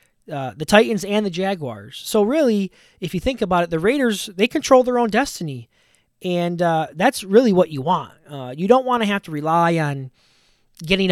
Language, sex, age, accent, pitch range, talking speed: English, male, 20-39, American, 140-195 Hz, 200 wpm